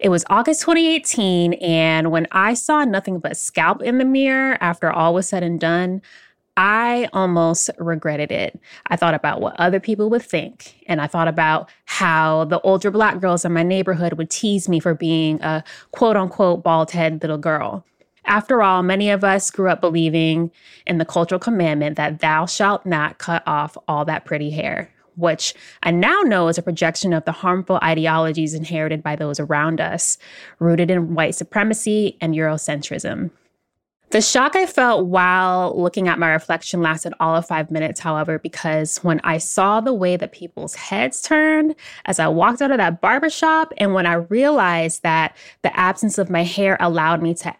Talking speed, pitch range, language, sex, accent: 180 wpm, 160-205 Hz, English, female, American